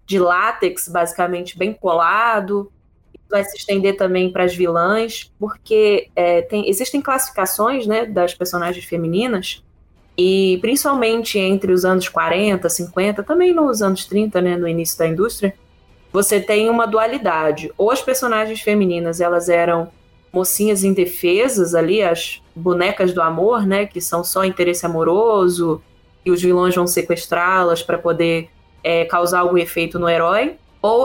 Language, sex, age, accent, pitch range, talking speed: Portuguese, female, 20-39, Brazilian, 170-205 Hz, 140 wpm